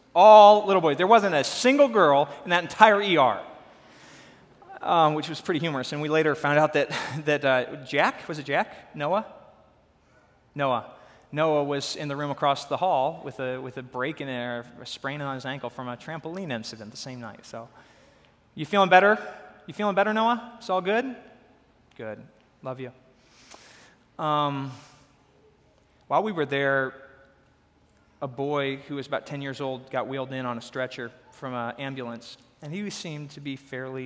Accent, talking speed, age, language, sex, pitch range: American, 175 wpm, 30-49, English, male, 120-150 Hz